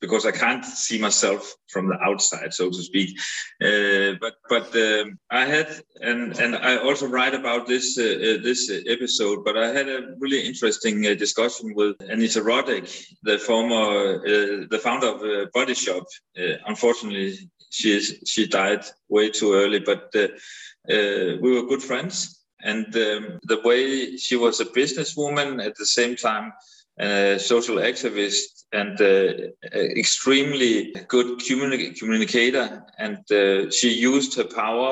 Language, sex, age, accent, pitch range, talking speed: English, male, 30-49, Danish, 105-135 Hz, 155 wpm